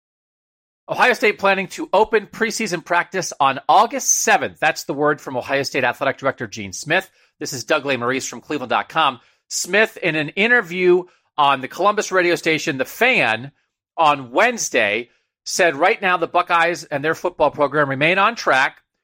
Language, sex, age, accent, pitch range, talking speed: English, male, 40-59, American, 140-180 Hz, 160 wpm